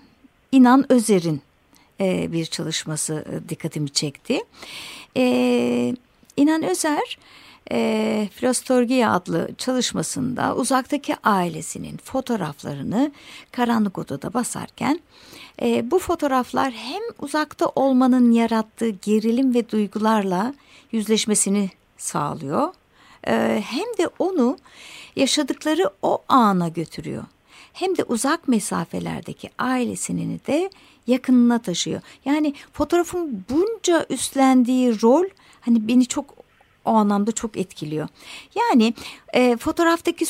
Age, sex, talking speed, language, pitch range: 60-79, female, 85 wpm, Turkish, 205-275 Hz